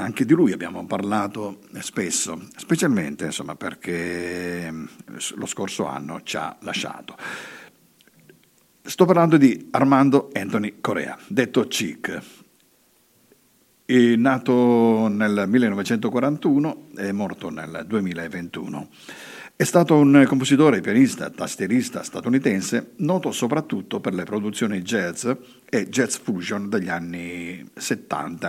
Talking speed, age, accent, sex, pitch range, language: 105 wpm, 50-69, native, male, 100-145 Hz, Italian